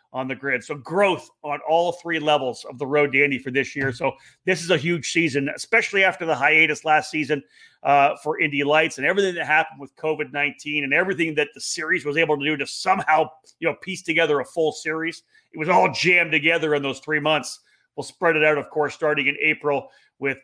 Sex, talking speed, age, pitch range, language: male, 220 wpm, 40-59, 140-175 Hz, English